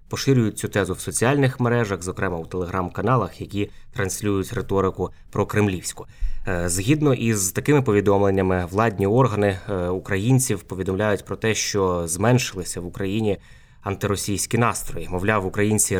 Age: 20-39